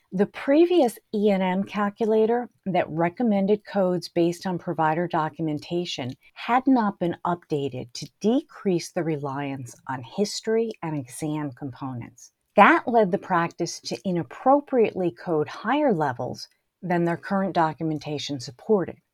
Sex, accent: female, American